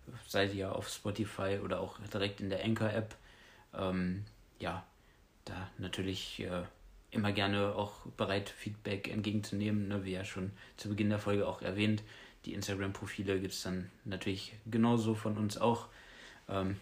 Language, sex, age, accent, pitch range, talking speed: German, male, 20-39, German, 95-110 Hz, 155 wpm